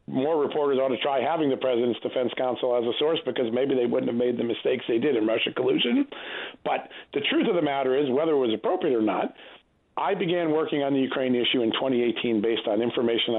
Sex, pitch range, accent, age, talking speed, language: male, 115-145 Hz, American, 40-59, 230 wpm, English